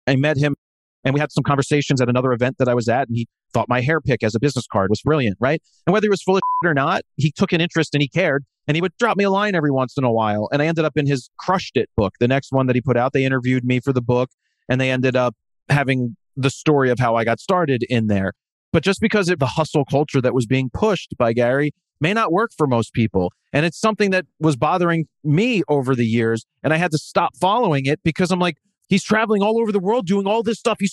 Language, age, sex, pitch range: English, 30-49, male, 130-190 Hz